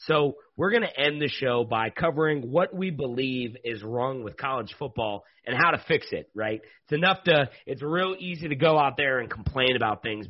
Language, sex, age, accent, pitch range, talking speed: English, male, 30-49, American, 120-155 Hz, 220 wpm